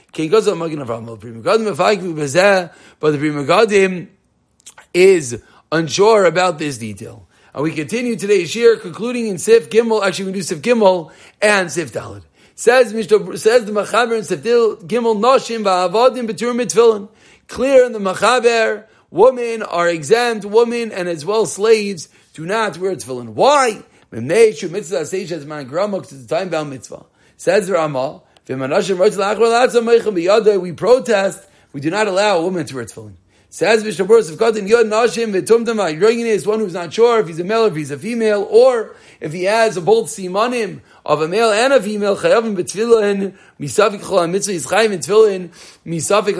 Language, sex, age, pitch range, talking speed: English, male, 40-59, 175-230 Hz, 150 wpm